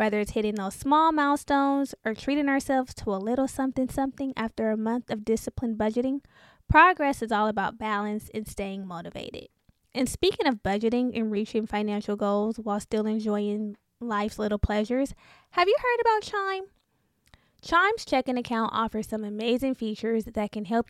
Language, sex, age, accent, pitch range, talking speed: English, female, 10-29, American, 215-265 Hz, 165 wpm